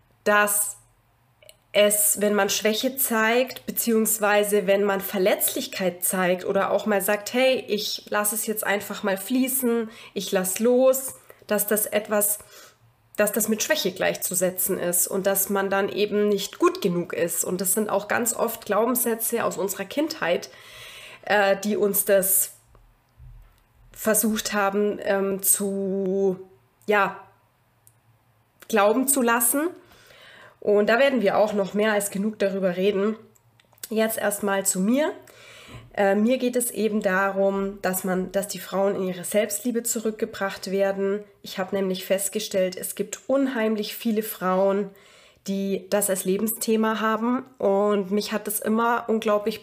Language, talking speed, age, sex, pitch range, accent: German, 140 wpm, 20-39, female, 195-225 Hz, German